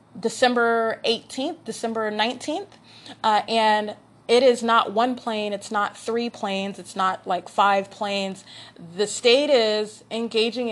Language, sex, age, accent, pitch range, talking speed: English, female, 30-49, American, 195-230 Hz, 135 wpm